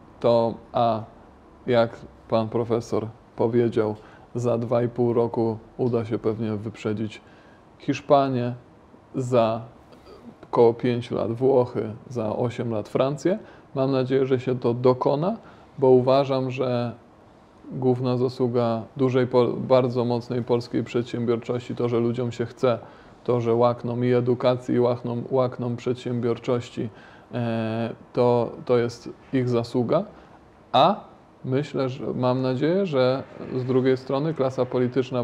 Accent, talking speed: native, 115 wpm